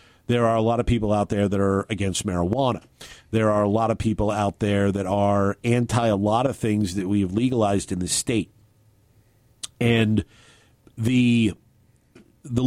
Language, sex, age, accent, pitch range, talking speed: English, male, 50-69, American, 100-125 Hz, 175 wpm